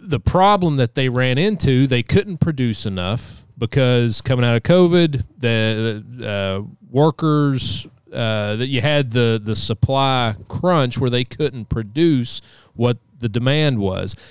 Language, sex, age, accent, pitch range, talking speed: English, male, 30-49, American, 110-135 Hz, 145 wpm